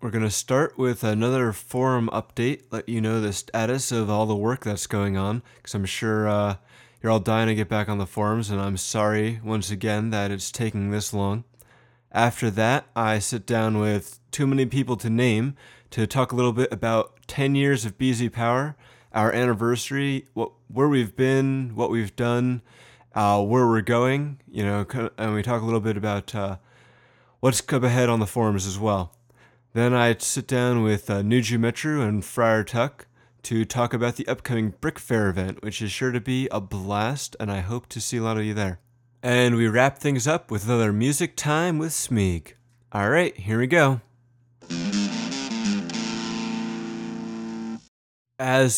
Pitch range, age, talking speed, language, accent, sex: 110-125 Hz, 20-39, 180 wpm, English, American, male